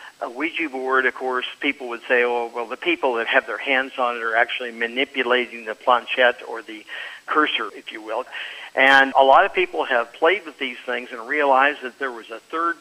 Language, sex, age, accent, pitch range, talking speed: English, male, 50-69, American, 125-155 Hz, 215 wpm